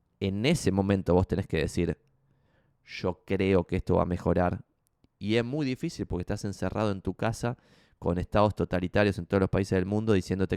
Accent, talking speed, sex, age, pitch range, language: Argentinian, 195 wpm, male, 20-39, 95-115 Hz, Spanish